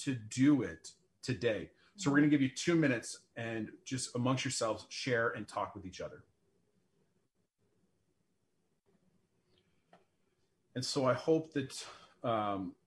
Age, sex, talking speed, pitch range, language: 40-59, male, 130 wpm, 130-160 Hz, English